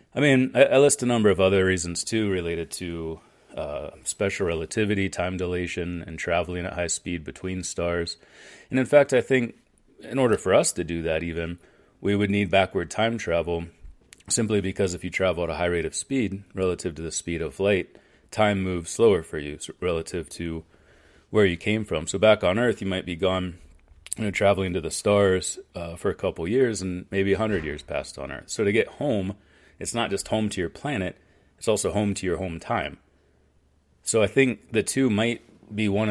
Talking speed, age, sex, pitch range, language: 205 wpm, 30-49, male, 85-105 Hz, Danish